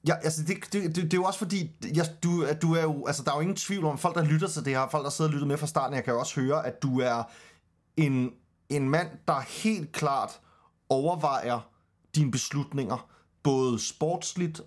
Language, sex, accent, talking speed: Danish, male, native, 220 wpm